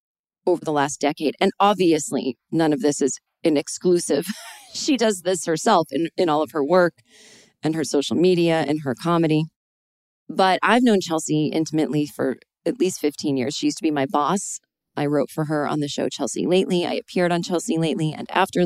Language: English